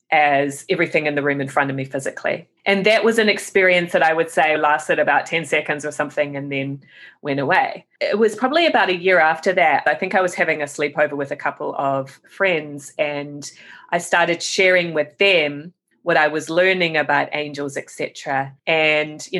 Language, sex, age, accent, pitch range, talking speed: English, female, 30-49, Australian, 145-190 Hz, 200 wpm